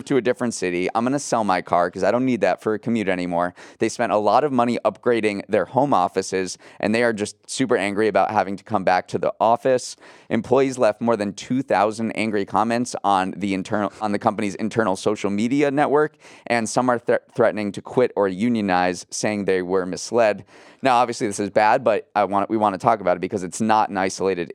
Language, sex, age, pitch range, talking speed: English, male, 30-49, 95-120 Hz, 220 wpm